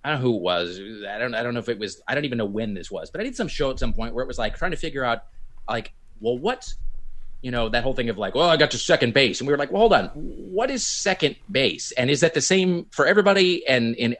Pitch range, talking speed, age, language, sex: 115-155 Hz, 310 wpm, 30-49, English, male